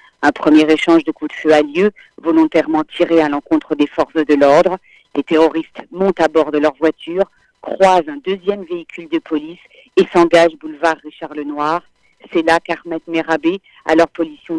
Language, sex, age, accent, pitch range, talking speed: French, female, 50-69, French, 160-195 Hz, 175 wpm